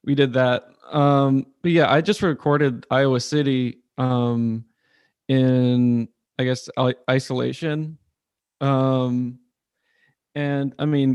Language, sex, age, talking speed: English, male, 20-39, 110 wpm